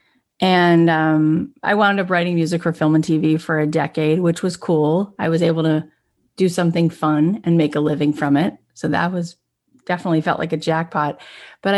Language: English